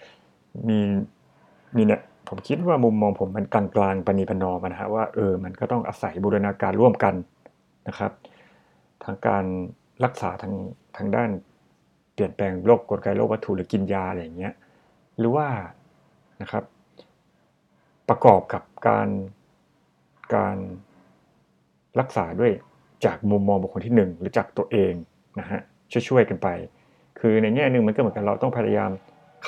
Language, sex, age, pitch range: Thai, male, 60-79, 95-115 Hz